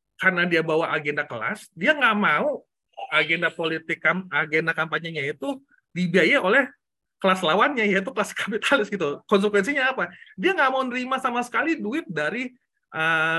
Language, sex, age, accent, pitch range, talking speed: Indonesian, male, 30-49, native, 135-190 Hz, 145 wpm